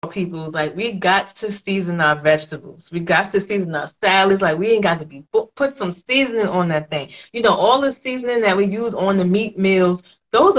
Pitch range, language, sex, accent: 165-210 Hz, English, female, American